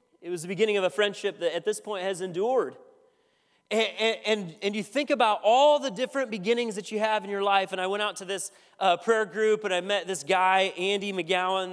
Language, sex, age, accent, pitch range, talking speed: English, male, 30-49, American, 170-220 Hz, 225 wpm